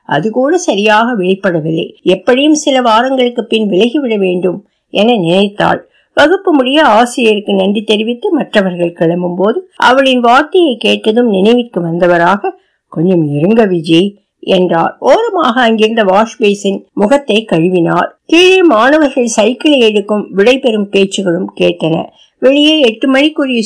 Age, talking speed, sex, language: 60-79, 105 wpm, female, Tamil